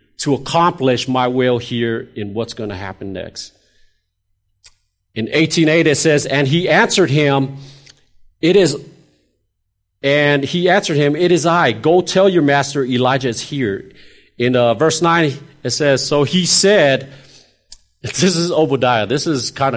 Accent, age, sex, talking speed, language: American, 40-59, male, 150 wpm, English